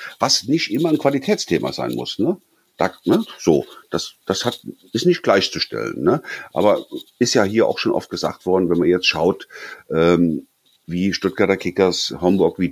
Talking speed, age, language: 175 wpm, 50-69, German